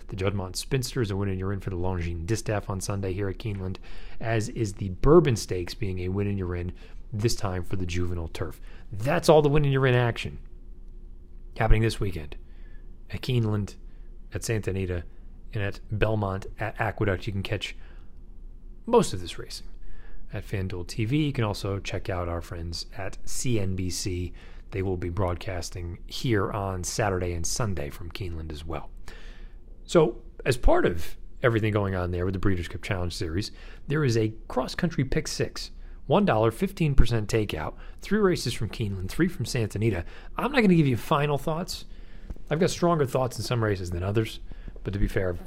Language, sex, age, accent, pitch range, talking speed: English, male, 30-49, American, 90-115 Hz, 185 wpm